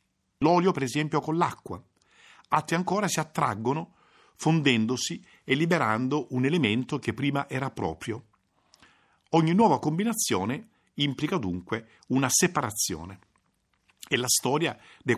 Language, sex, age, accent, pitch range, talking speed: Italian, male, 50-69, native, 105-150 Hz, 115 wpm